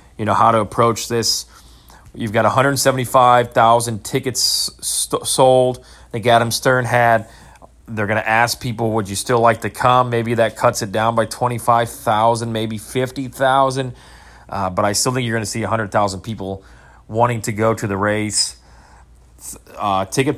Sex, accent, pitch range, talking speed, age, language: male, American, 100-125 Hz, 160 wpm, 30-49, English